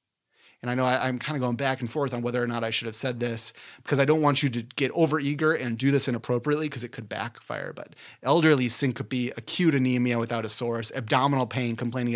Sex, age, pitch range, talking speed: male, 30-49, 120-140 Hz, 235 wpm